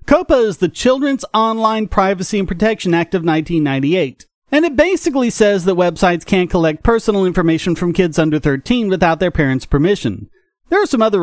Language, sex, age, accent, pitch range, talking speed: English, male, 40-59, American, 155-220 Hz, 175 wpm